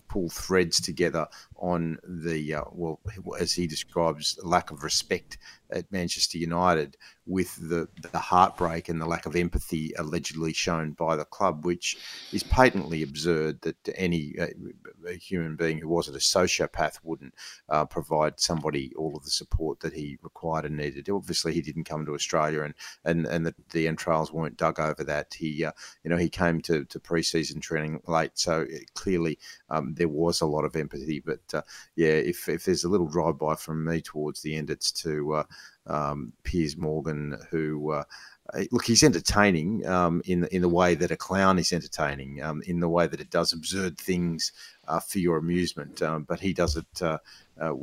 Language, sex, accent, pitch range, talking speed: English, male, Australian, 75-85 Hz, 190 wpm